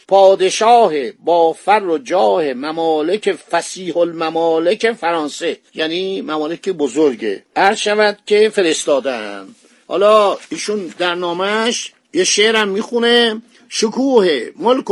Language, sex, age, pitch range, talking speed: Persian, male, 50-69, 170-235 Hz, 95 wpm